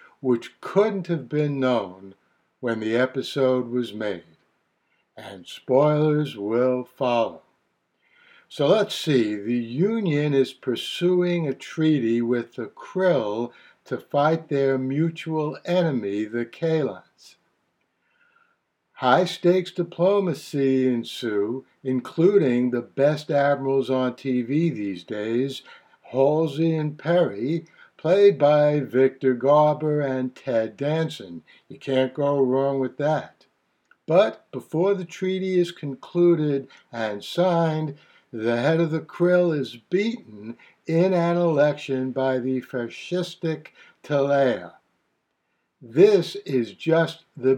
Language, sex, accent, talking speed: English, male, American, 110 wpm